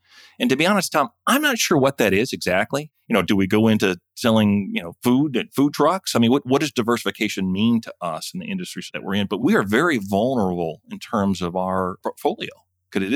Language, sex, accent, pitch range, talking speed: English, male, American, 90-120 Hz, 235 wpm